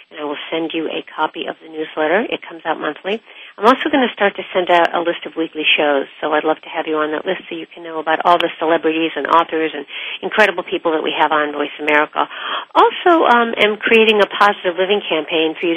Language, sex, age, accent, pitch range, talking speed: English, female, 50-69, American, 160-200 Hz, 245 wpm